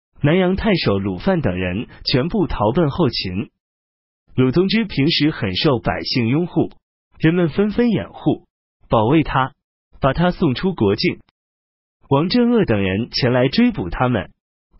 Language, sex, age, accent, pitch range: Chinese, male, 30-49, native, 115-195 Hz